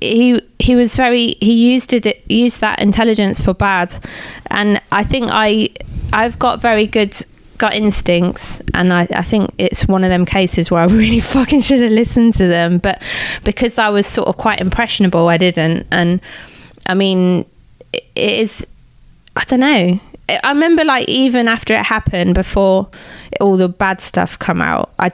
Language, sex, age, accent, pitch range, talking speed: English, female, 20-39, British, 175-220 Hz, 175 wpm